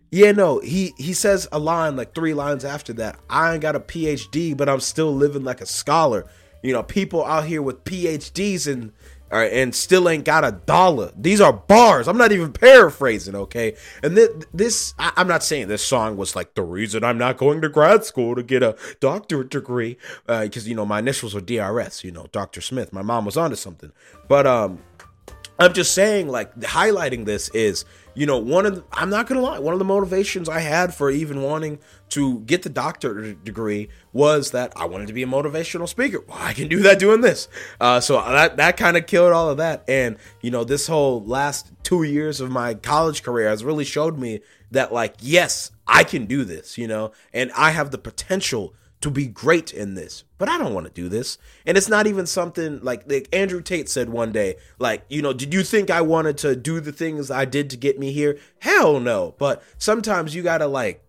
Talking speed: 225 wpm